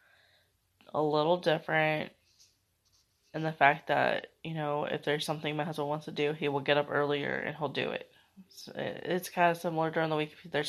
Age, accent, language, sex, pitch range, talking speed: 20-39, American, English, female, 105-170 Hz, 195 wpm